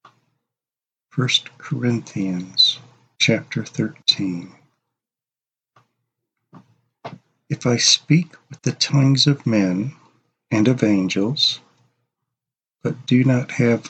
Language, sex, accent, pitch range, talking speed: English, male, American, 110-135 Hz, 80 wpm